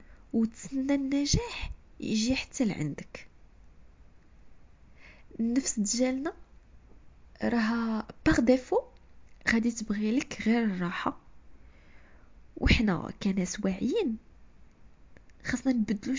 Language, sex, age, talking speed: Arabic, female, 20-39, 70 wpm